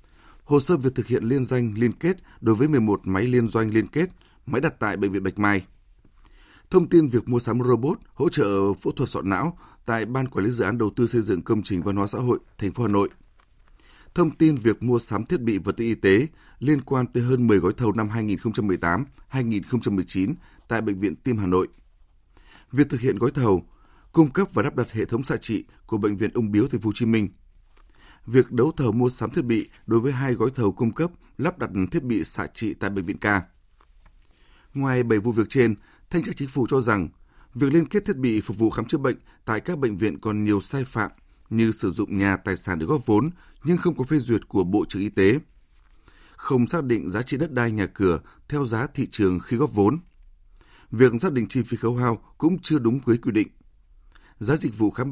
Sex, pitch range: male, 100-130 Hz